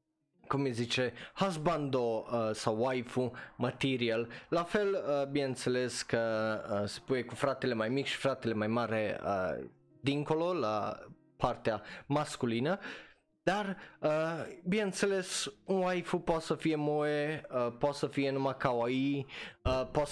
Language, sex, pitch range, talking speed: Romanian, male, 120-160 Hz, 135 wpm